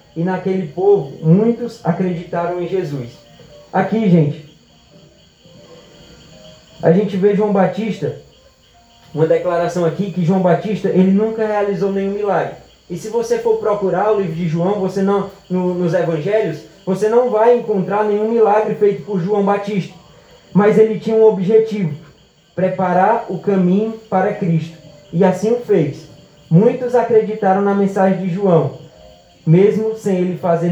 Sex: male